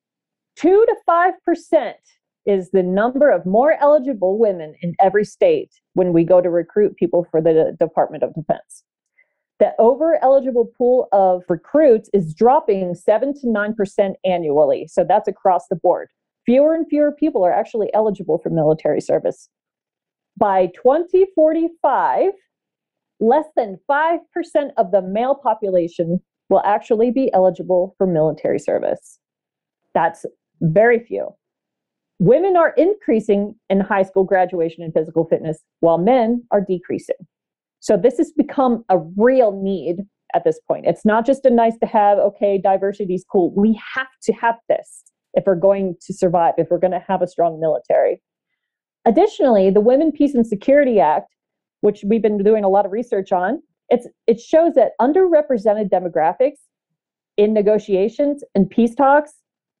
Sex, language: female, English